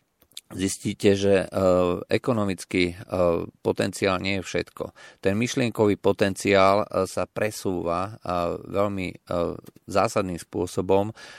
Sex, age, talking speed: male, 40-59, 105 wpm